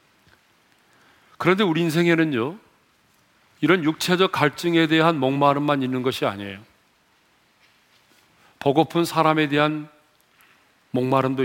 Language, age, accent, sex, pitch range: Korean, 40-59, native, male, 125-160 Hz